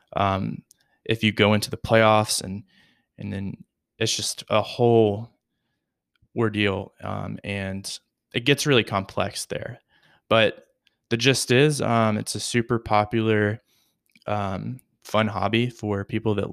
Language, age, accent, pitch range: English, 20-39, American, 100-115 Hz